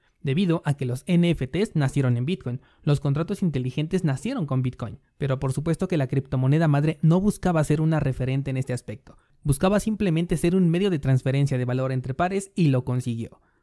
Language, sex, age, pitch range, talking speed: Spanish, male, 20-39, 130-165 Hz, 190 wpm